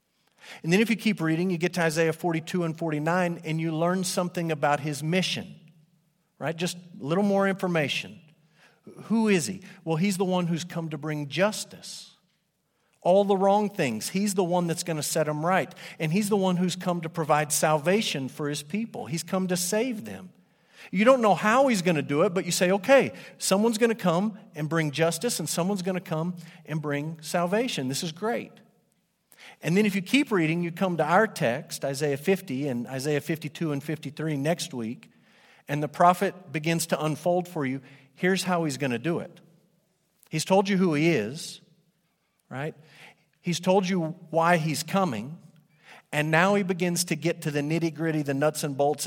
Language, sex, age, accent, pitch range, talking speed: English, male, 50-69, American, 155-190 Hz, 195 wpm